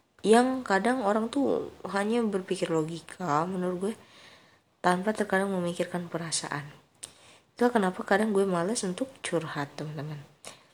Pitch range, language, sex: 155-190 Hz, Indonesian, female